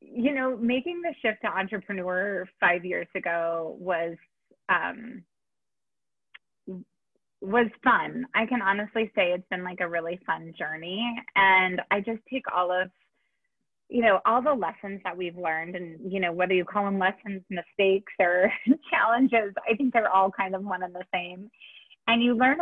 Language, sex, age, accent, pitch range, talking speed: English, female, 30-49, American, 180-230 Hz, 165 wpm